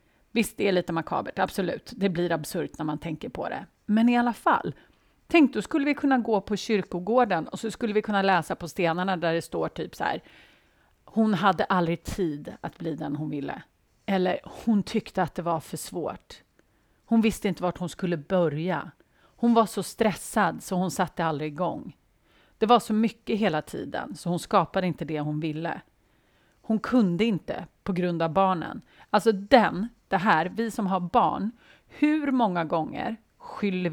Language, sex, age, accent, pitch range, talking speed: Swedish, female, 30-49, native, 165-220 Hz, 185 wpm